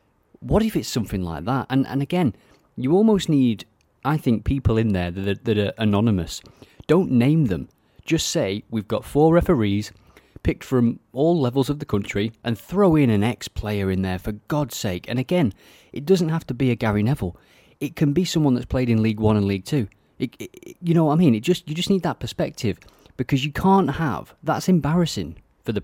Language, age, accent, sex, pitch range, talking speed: English, 30-49, British, male, 100-150 Hz, 215 wpm